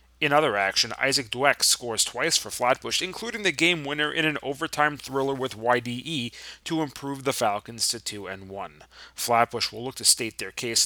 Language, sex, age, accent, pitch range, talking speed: English, male, 30-49, American, 110-150 Hz, 170 wpm